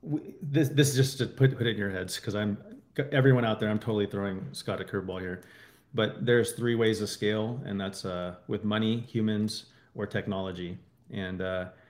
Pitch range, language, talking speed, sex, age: 105-120 Hz, English, 200 wpm, male, 30-49